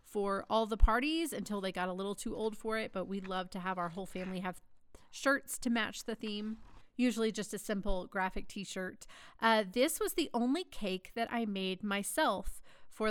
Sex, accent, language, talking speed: female, American, English, 195 wpm